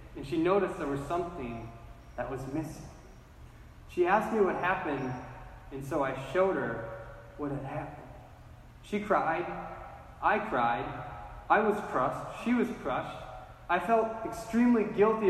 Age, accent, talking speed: 20-39, American, 140 wpm